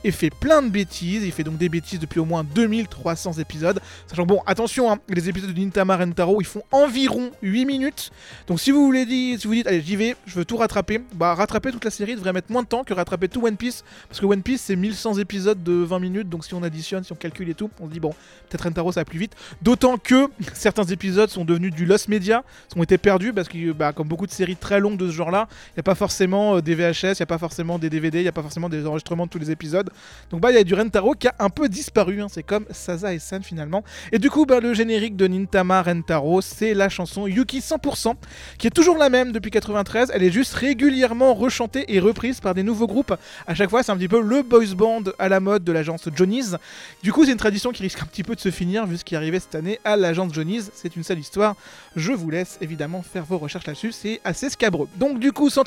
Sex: male